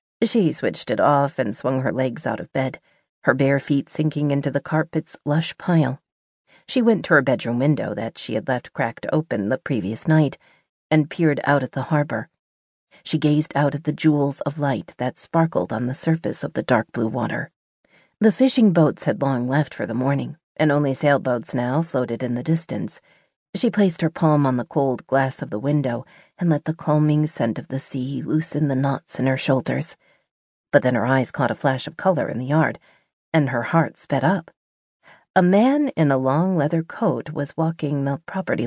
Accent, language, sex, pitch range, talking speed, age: American, English, female, 130-160 Hz, 200 wpm, 40-59